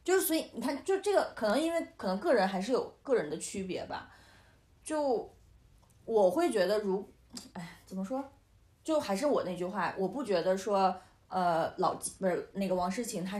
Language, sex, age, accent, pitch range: Chinese, female, 20-39, native, 180-245 Hz